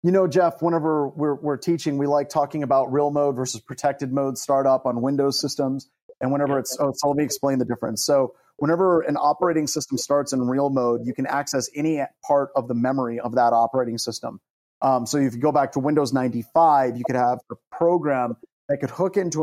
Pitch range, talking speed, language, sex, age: 130-155 Hz, 215 wpm, English, male, 30-49